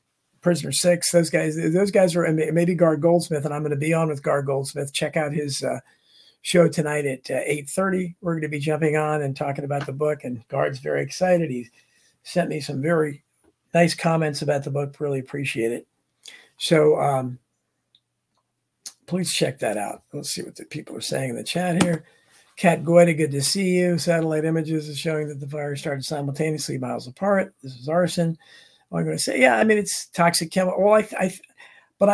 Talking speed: 200 wpm